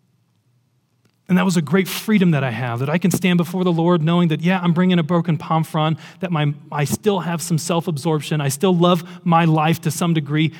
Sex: male